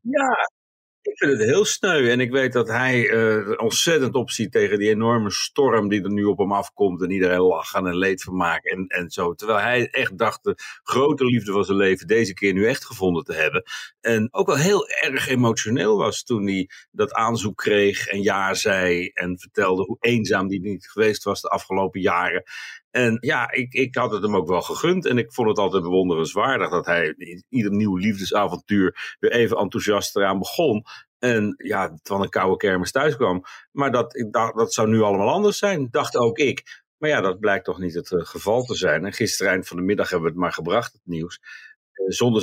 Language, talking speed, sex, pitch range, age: Dutch, 215 wpm, male, 90-115 Hz, 50-69